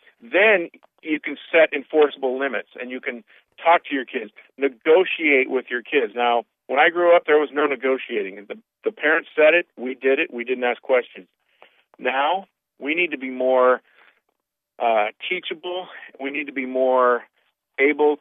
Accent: American